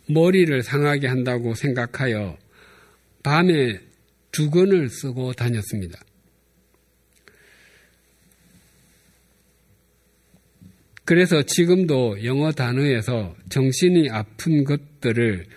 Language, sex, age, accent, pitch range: Korean, male, 50-69, native, 110-145 Hz